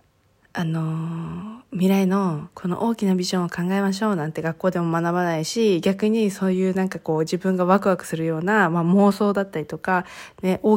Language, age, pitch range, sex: Japanese, 20-39, 165-195 Hz, female